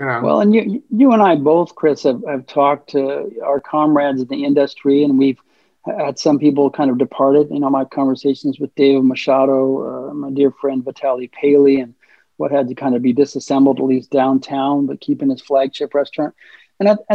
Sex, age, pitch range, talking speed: male, 40-59, 140-160 Hz, 195 wpm